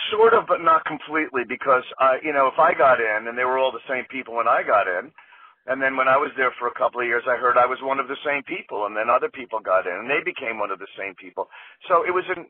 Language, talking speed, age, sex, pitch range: English, 300 wpm, 50-69, male, 135-185 Hz